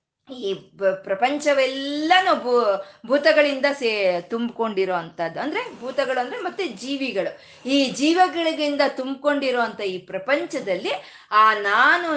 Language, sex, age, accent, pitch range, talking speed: Kannada, female, 20-39, native, 200-285 Hz, 95 wpm